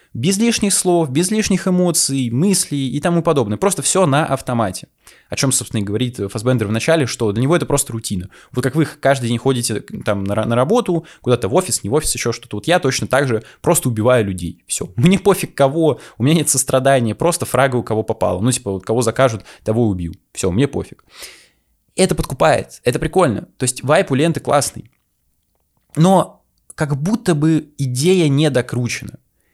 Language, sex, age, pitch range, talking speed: Russian, male, 20-39, 110-165 Hz, 185 wpm